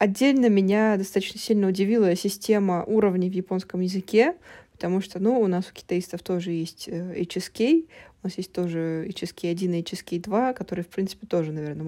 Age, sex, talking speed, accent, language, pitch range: 20-39, female, 160 wpm, native, Russian, 175-205 Hz